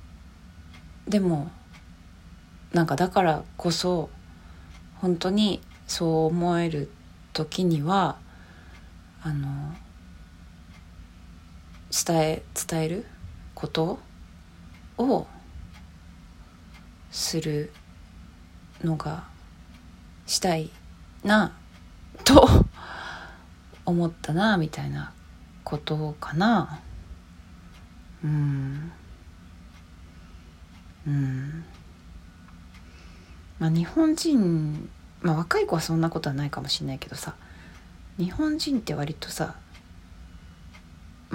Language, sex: Japanese, female